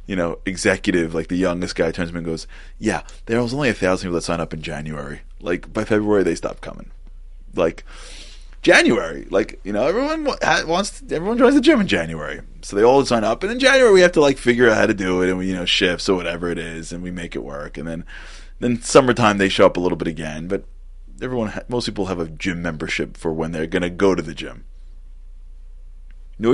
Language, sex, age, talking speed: English, male, 20-39, 240 wpm